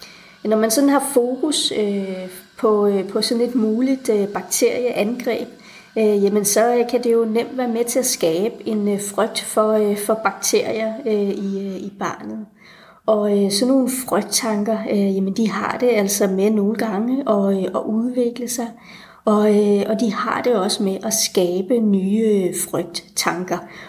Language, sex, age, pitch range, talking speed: Danish, female, 30-49, 195-225 Hz, 170 wpm